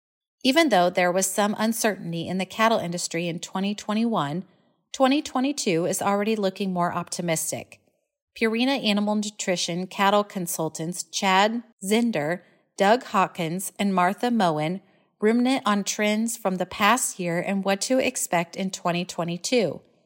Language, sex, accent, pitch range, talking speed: English, female, American, 180-225 Hz, 130 wpm